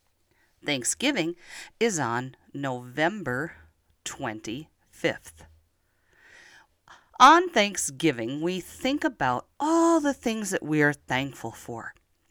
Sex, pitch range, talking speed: female, 120-170 Hz, 90 wpm